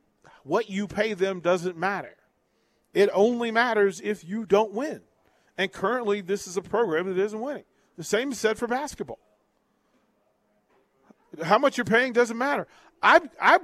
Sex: male